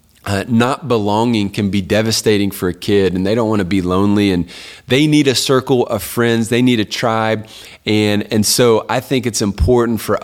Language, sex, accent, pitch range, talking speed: English, male, American, 95-115 Hz, 205 wpm